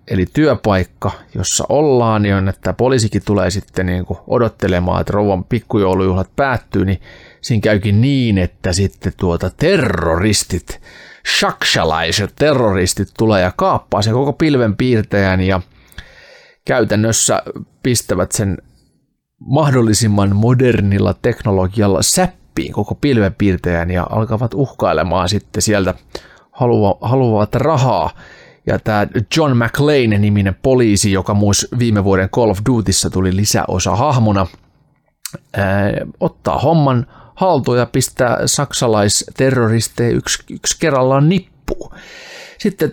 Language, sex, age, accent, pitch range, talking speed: Finnish, male, 30-49, native, 95-130 Hz, 105 wpm